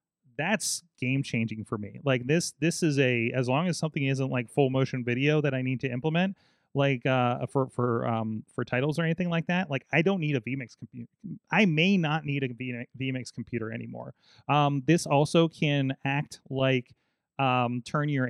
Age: 30-49